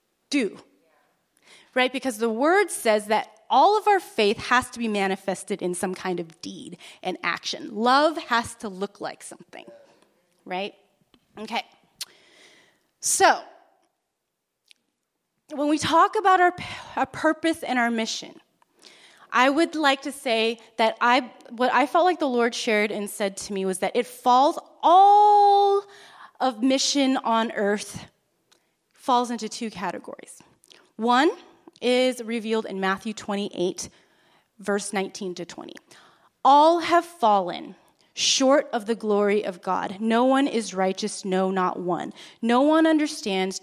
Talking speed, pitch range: 140 wpm, 205-295 Hz